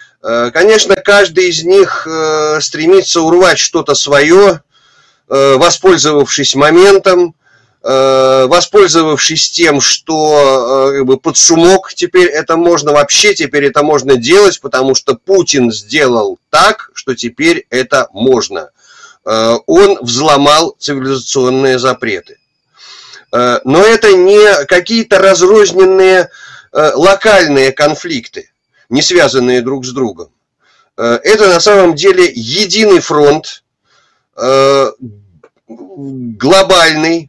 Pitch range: 135-195 Hz